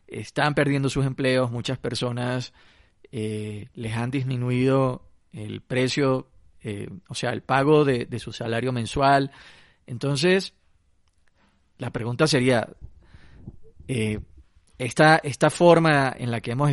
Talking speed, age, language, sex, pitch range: 120 wpm, 30-49, Spanish, male, 120-150 Hz